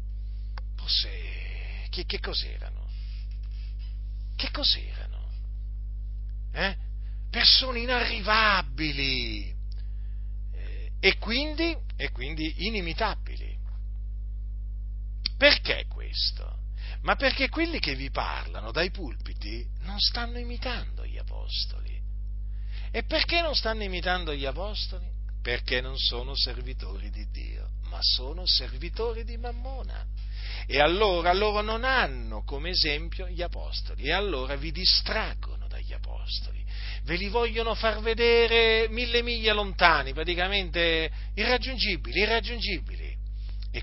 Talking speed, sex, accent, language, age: 100 wpm, male, native, Italian, 50-69